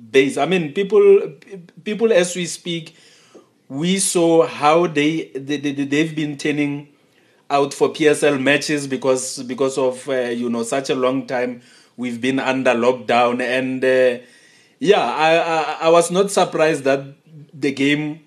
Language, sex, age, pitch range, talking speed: English, male, 30-49, 130-155 Hz, 155 wpm